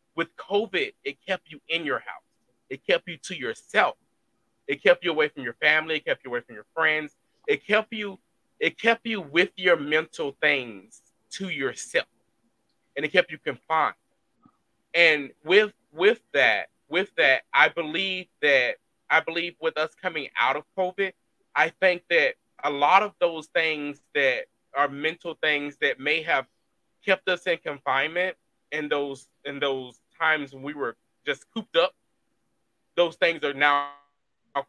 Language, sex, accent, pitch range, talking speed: English, male, American, 145-185 Hz, 165 wpm